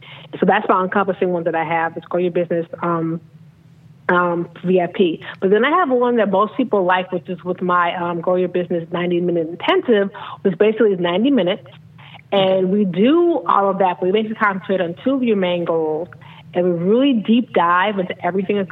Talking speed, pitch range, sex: 200 wpm, 170-190 Hz, female